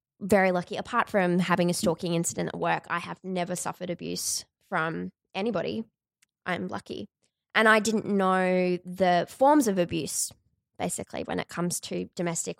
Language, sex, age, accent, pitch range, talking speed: English, female, 20-39, Australian, 175-205 Hz, 155 wpm